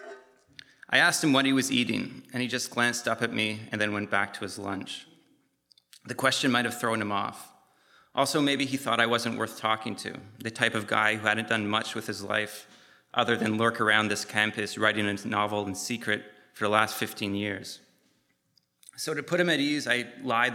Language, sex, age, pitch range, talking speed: English, male, 30-49, 105-125 Hz, 210 wpm